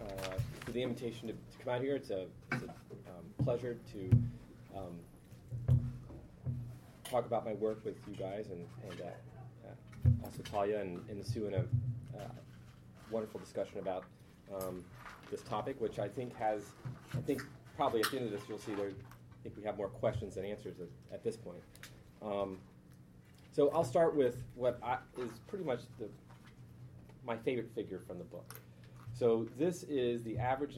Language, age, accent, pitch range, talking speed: English, 30-49, American, 85-125 Hz, 170 wpm